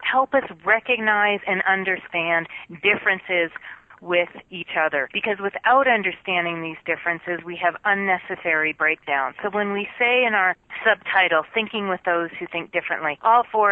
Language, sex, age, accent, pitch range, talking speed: English, female, 40-59, American, 170-205 Hz, 145 wpm